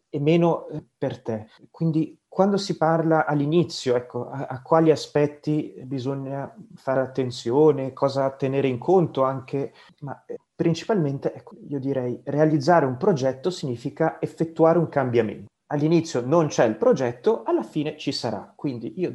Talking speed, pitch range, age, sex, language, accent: 140 wpm, 125-165 Hz, 30-49, male, Italian, native